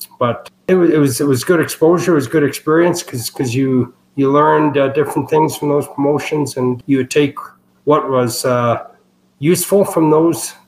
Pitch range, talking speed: 120-140 Hz, 185 wpm